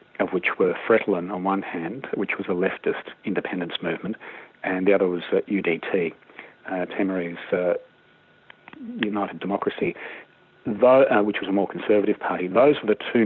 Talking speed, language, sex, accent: 165 wpm, English, male, Australian